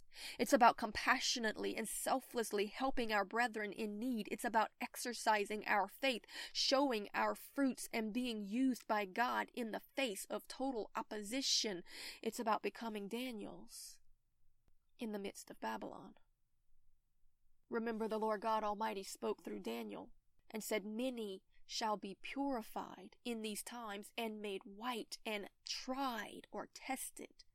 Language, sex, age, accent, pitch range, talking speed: English, female, 20-39, American, 215-270 Hz, 135 wpm